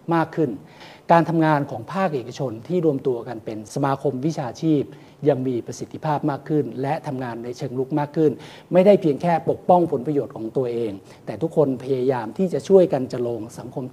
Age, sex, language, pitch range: 60-79, male, Thai, 130-165 Hz